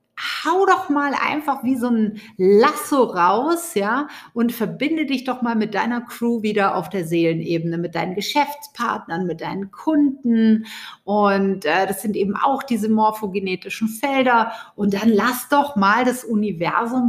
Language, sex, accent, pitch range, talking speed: German, female, German, 195-255 Hz, 155 wpm